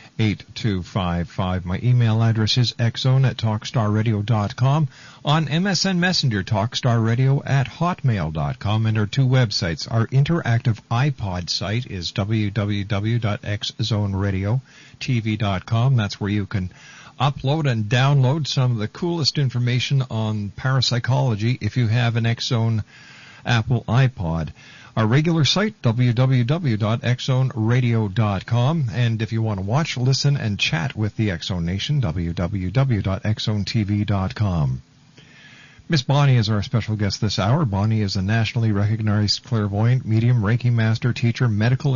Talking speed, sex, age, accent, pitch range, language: 115 wpm, male, 50-69, American, 105-135 Hz, English